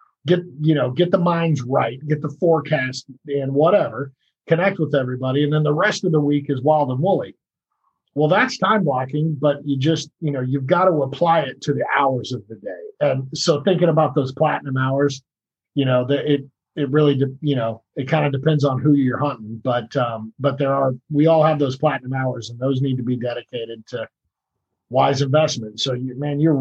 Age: 40-59